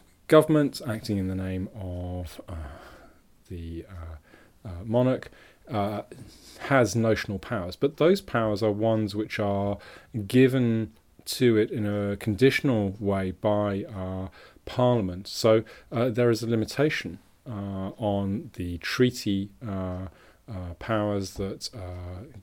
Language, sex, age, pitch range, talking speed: English, male, 30-49, 95-120 Hz, 125 wpm